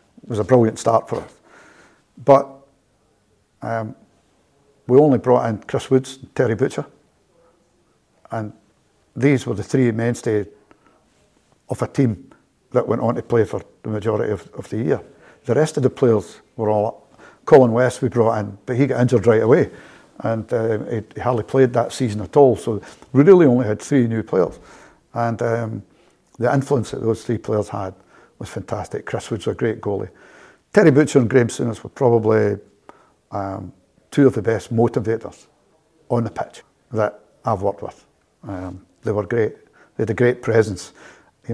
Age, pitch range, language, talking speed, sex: 60-79, 105-130 Hz, English, 175 wpm, male